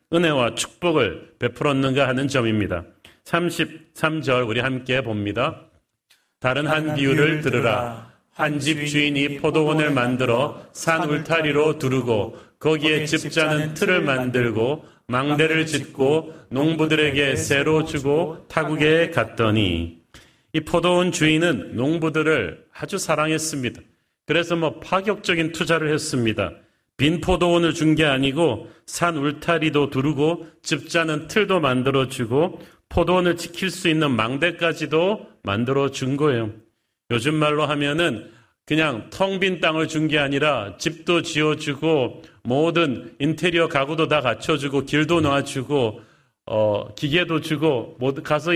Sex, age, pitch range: male, 40-59, 135-165 Hz